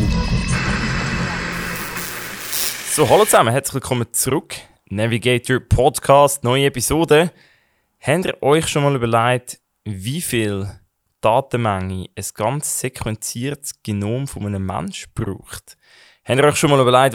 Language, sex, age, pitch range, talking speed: German, male, 20-39, 110-135 Hz, 115 wpm